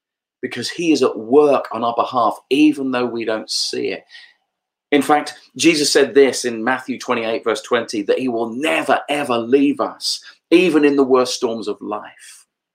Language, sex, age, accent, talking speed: English, male, 40-59, British, 180 wpm